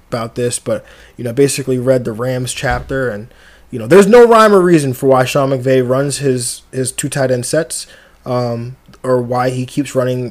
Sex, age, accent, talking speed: male, 20-39, American, 205 wpm